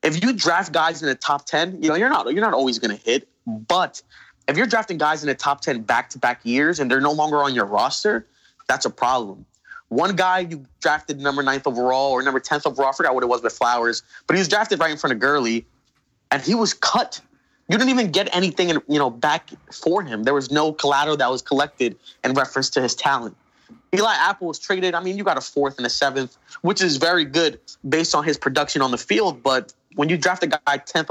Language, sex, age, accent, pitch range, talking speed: English, male, 20-39, American, 130-165 Hz, 240 wpm